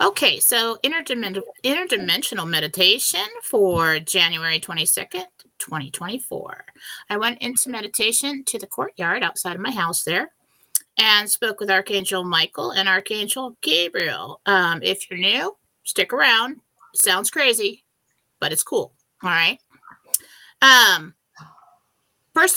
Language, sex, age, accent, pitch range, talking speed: English, female, 30-49, American, 200-295 Hz, 115 wpm